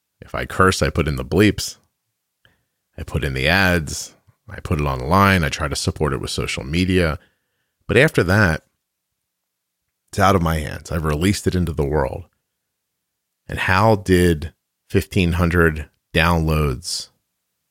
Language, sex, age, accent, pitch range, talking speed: English, male, 40-59, American, 70-90 Hz, 150 wpm